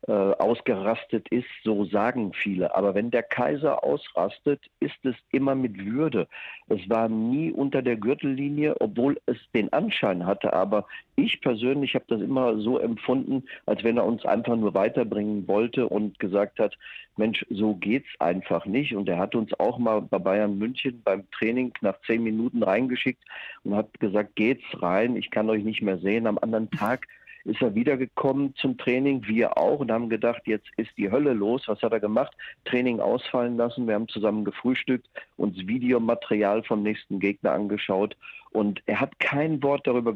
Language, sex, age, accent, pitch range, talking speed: German, male, 50-69, German, 105-125 Hz, 175 wpm